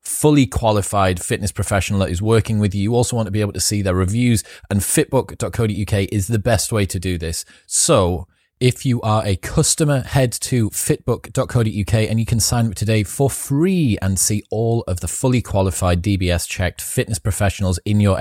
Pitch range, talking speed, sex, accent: 90-115 Hz, 190 wpm, male, British